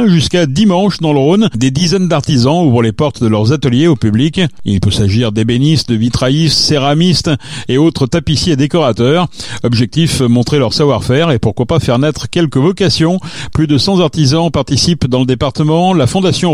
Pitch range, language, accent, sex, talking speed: 125-160 Hz, French, French, male, 175 wpm